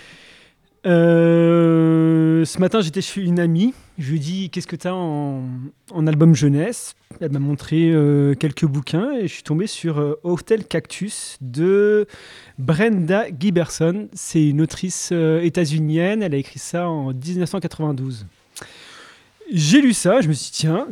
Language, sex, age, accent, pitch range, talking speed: French, male, 30-49, French, 140-180 Hz, 165 wpm